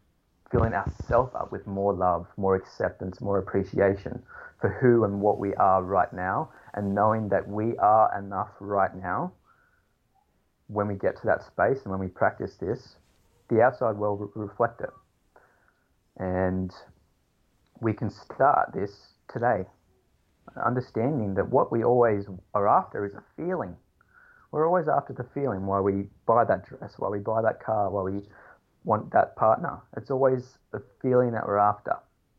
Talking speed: 160 wpm